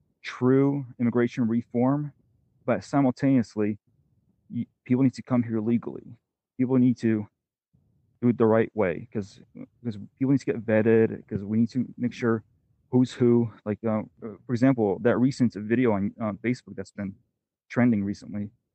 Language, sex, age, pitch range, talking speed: English, male, 30-49, 110-125 Hz, 150 wpm